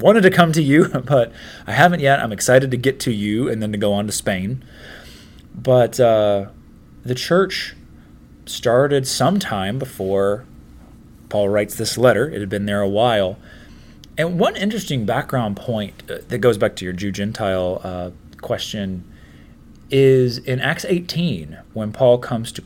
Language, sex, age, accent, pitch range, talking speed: English, male, 30-49, American, 95-135 Hz, 160 wpm